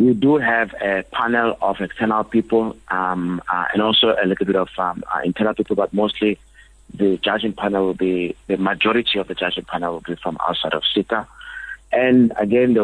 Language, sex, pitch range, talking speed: English, male, 95-115 Hz, 195 wpm